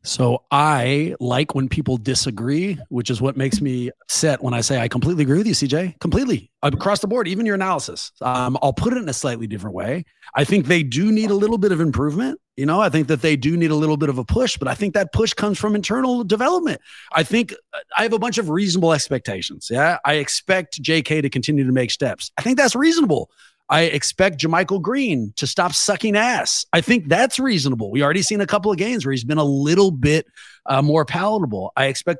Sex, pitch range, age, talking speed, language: male, 140-210 Hz, 30-49, 225 wpm, English